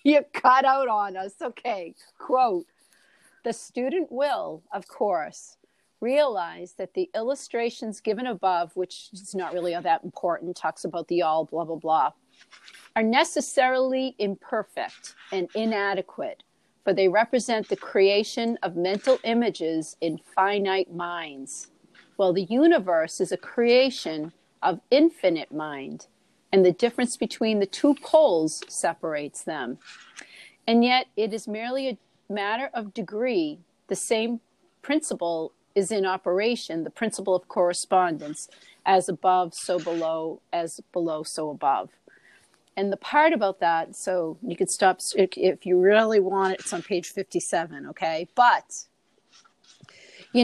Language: English